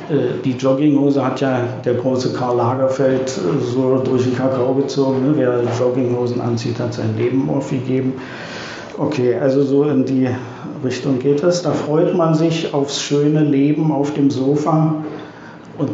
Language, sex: German, male